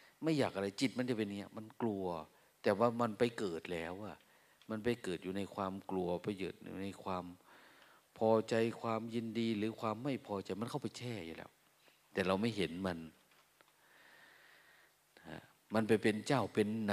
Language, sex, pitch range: Thai, male, 90-115 Hz